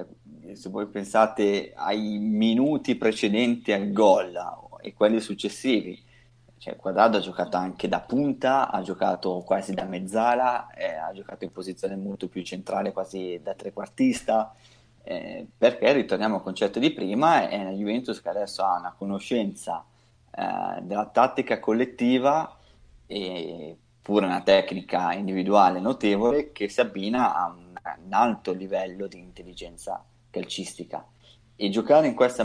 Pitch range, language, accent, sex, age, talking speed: 95-120 Hz, Italian, native, male, 30-49, 135 wpm